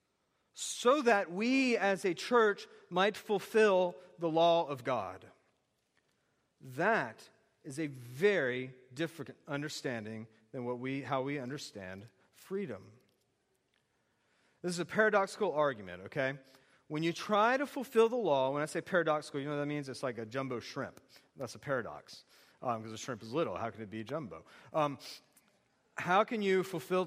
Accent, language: American, English